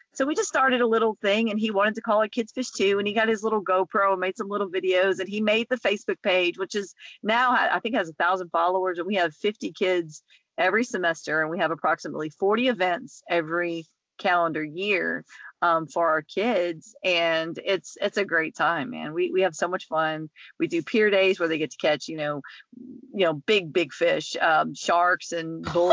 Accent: American